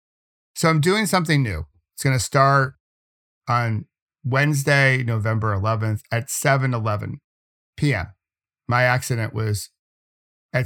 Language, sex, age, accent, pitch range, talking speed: English, male, 50-69, American, 110-140 Hz, 105 wpm